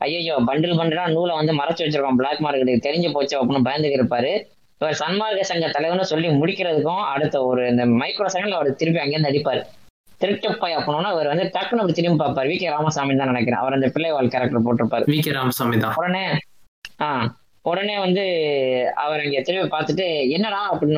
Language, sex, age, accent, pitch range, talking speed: Tamil, female, 20-39, native, 125-160 Hz, 165 wpm